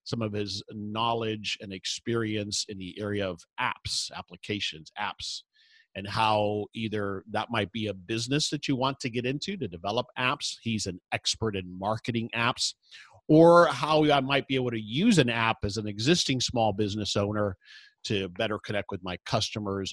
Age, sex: 50-69, male